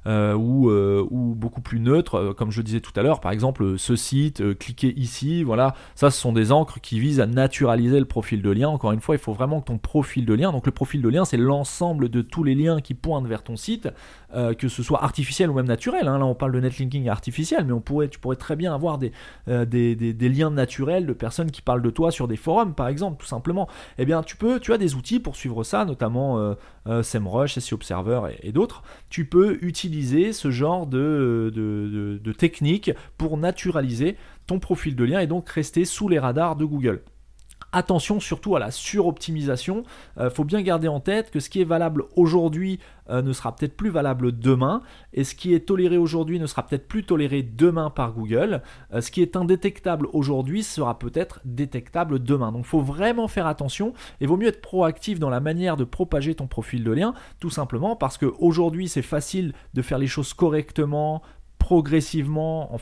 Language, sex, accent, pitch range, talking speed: French, male, French, 125-170 Hz, 220 wpm